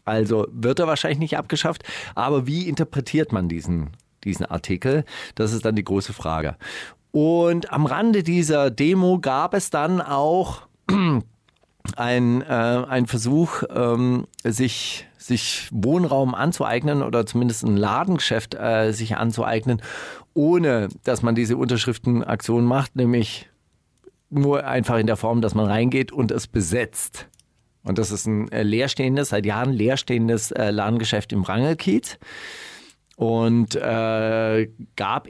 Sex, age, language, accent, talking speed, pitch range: male, 40-59, German, German, 130 wpm, 110-140 Hz